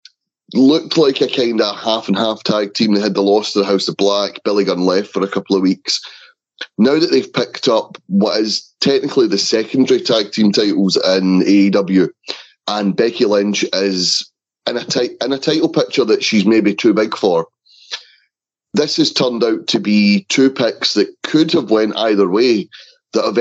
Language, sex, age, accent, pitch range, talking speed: English, male, 30-49, British, 95-115 Hz, 185 wpm